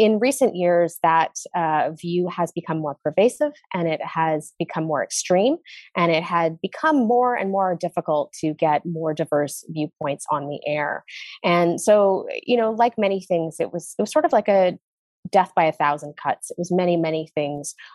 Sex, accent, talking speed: female, American, 190 wpm